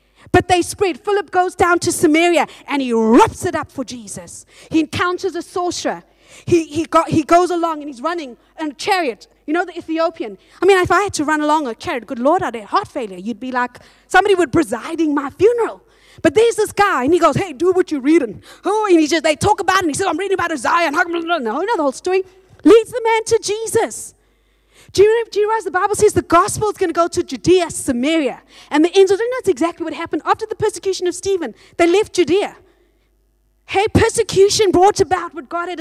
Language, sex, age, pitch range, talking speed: English, female, 30-49, 315-390 Hz, 235 wpm